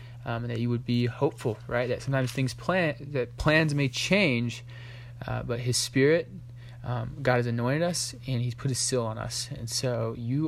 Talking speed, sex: 200 wpm, male